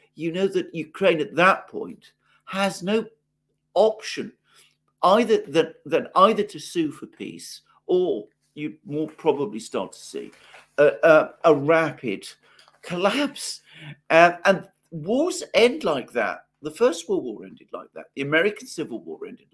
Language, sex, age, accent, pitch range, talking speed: English, male, 50-69, British, 135-205 Hz, 145 wpm